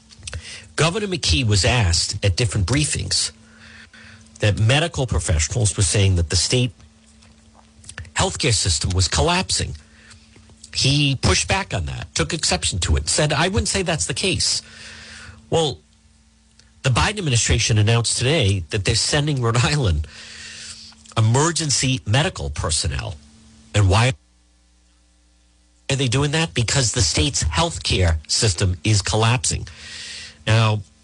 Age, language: 50-69, English